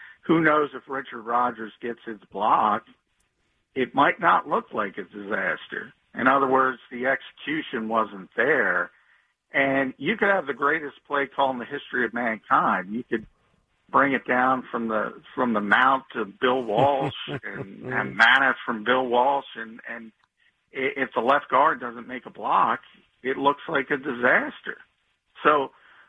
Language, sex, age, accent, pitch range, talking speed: English, male, 50-69, American, 120-145 Hz, 165 wpm